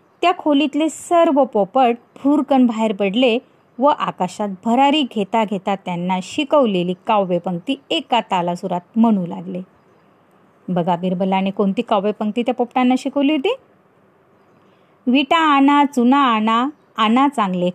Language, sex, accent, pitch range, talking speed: Marathi, female, native, 185-270 Hz, 80 wpm